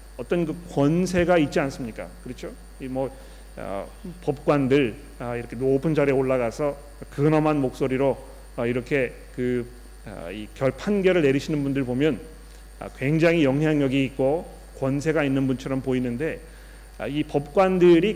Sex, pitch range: male, 135-180 Hz